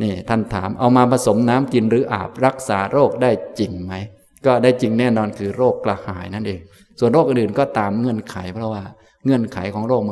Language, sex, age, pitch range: Thai, male, 20-39, 100-125 Hz